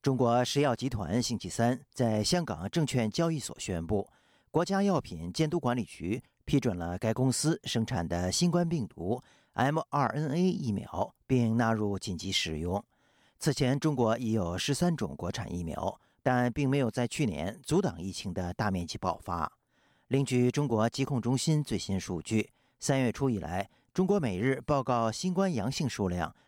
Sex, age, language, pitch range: male, 50-69, Chinese, 105-145 Hz